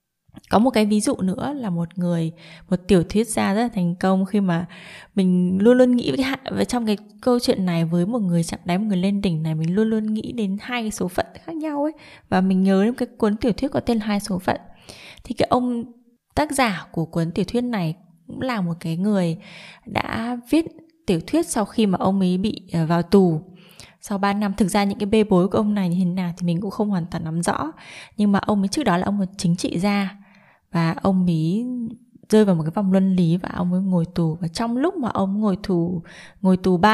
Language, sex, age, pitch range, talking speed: Vietnamese, female, 20-39, 175-215 Hz, 240 wpm